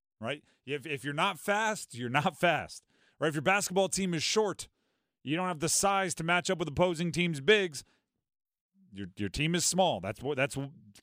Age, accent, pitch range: 30-49, American, 140-190 Hz